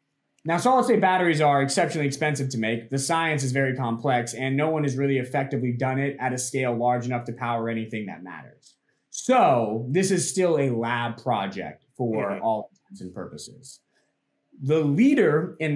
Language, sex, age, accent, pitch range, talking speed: English, male, 20-39, American, 120-155 Hz, 175 wpm